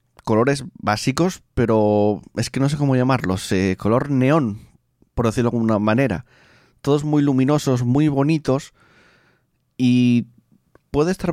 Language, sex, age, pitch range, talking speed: Spanish, male, 30-49, 100-125 Hz, 130 wpm